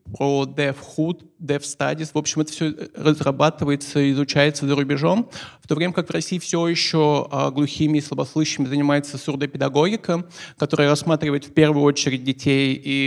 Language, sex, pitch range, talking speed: Russian, male, 140-155 Hz, 150 wpm